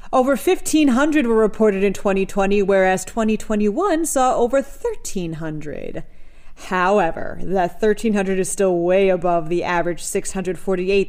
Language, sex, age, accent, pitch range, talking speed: English, female, 30-49, American, 180-250 Hz, 115 wpm